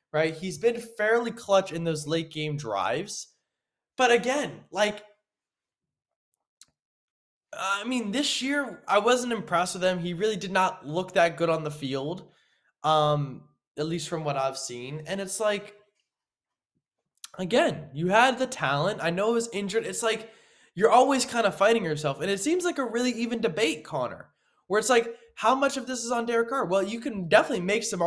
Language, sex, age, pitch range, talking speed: English, male, 20-39, 165-230 Hz, 185 wpm